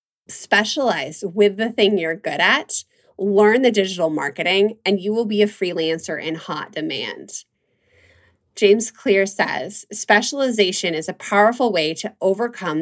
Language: English